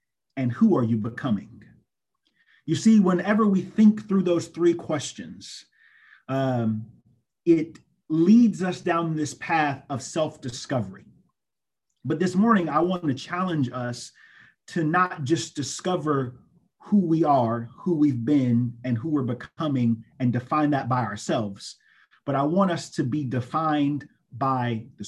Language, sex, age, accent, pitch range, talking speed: English, male, 30-49, American, 125-170 Hz, 140 wpm